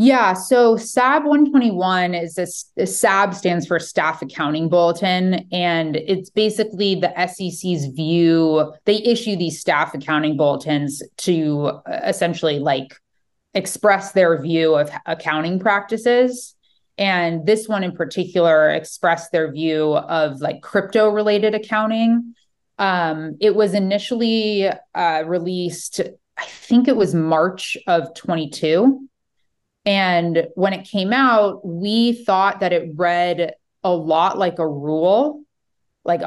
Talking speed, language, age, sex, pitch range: 125 wpm, English, 20-39, female, 160-205 Hz